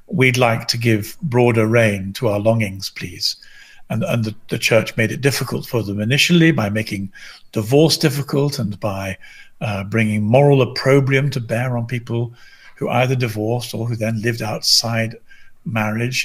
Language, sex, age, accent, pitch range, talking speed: English, male, 50-69, British, 110-150 Hz, 165 wpm